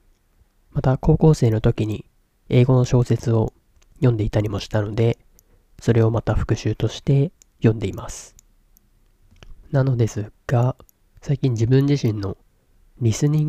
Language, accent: Japanese, native